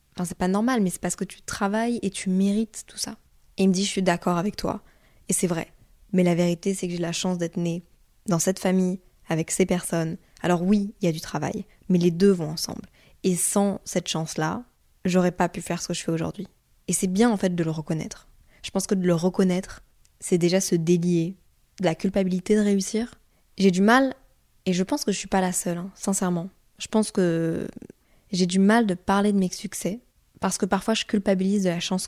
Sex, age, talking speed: female, 20-39, 230 wpm